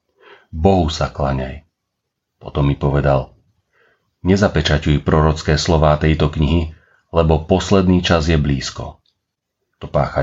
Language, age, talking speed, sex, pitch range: Slovak, 40-59, 105 wpm, male, 75-90 Hz